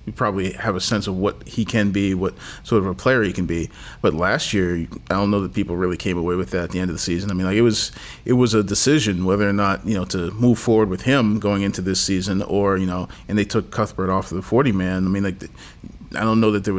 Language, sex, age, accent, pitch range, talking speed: English, male, 40-59, American, 90-105 Hz, 285 wpm